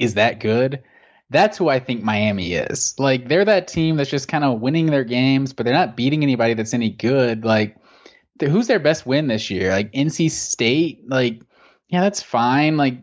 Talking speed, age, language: 205 wpm, 20-39, English